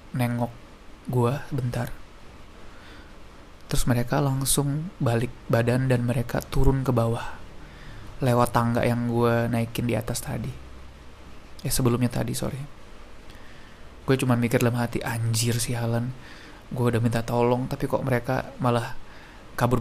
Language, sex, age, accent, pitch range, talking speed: Indonesian, male, 20-39, native, 115-135 Hz, 130 wpm